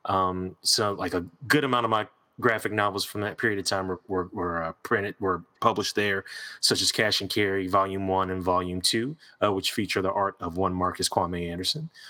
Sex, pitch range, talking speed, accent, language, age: male, 95-115 Hz, 205 wpm, American, English, 30-49